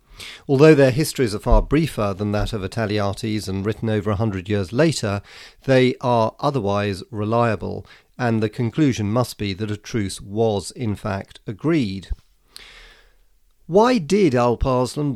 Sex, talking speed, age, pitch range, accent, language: male, 145 wpm, 40-59, 100-130 Hz, British, English